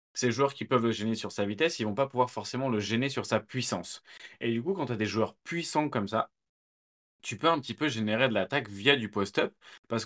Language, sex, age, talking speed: French, male, 20-39, 255 wpm